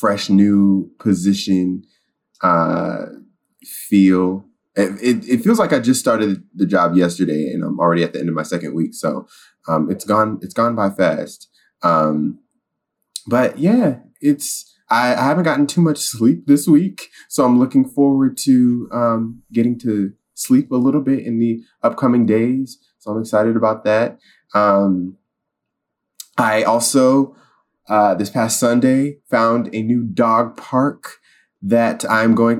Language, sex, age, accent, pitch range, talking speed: English, male, 20-39, American, 95-125 Hz, 155 wpm